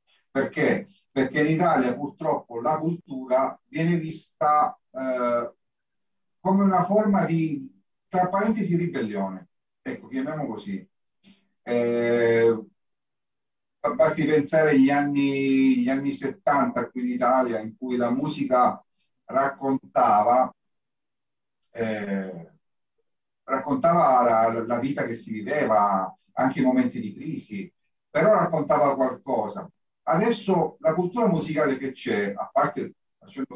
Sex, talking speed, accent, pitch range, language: male, 105 wpm, native, 130-195 Hz, Italian